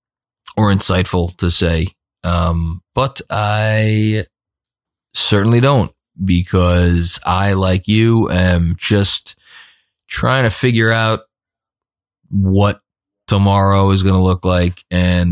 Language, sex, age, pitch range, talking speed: English, male, 20-39, 95-120 Hz, 105 wpm